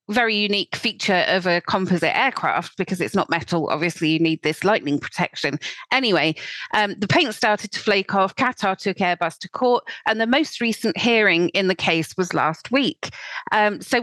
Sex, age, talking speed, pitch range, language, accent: female, 30-49, 185 wpm, 175-225 Hz, English, British